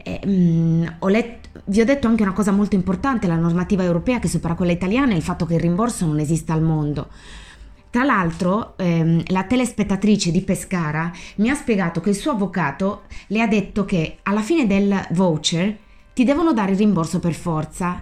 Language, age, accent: Italian, 20-39, native